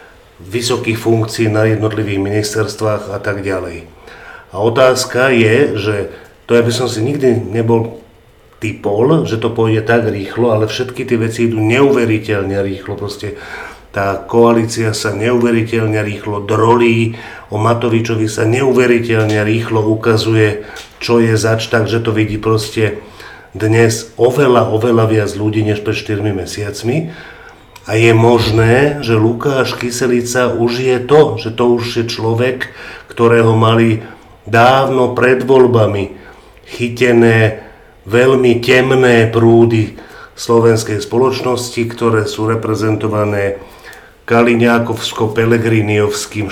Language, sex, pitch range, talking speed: Slovak, male, 105-120 Hz, 115 wpm